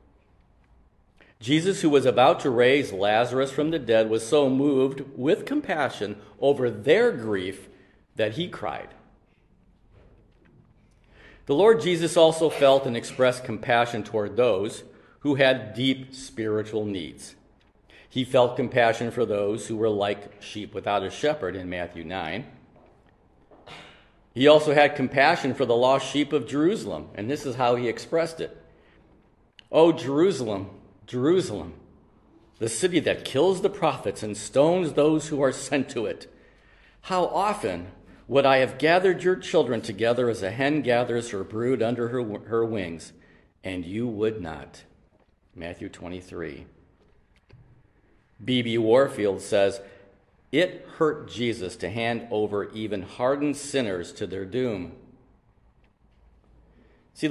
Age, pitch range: 50-69, 105-145 Hz